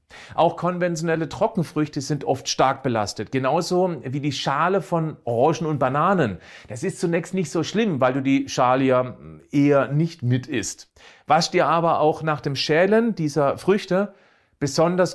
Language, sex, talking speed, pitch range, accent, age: German, male, 160 wpm, 130-180 Hz, German, 40-59